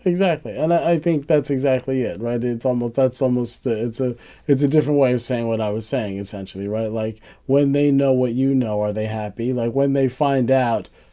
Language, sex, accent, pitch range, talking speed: English, male, American, 110-140 Hz, 225 wpm